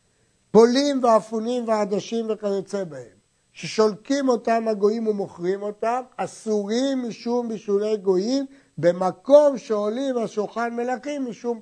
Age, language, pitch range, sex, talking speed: 60-79, Hebrew, 165-220 Hz, male, 105 wpm